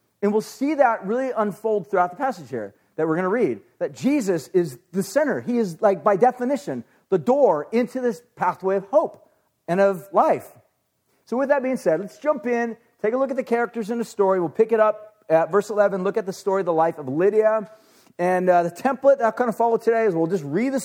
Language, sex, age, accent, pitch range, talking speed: English, male, 40-59, American, 185-235 Hz, 240 wpm